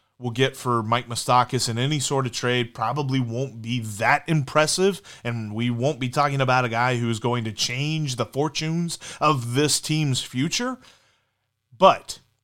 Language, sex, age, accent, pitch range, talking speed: English, male, 30-49, American, 115-150 Hz, 170 wpm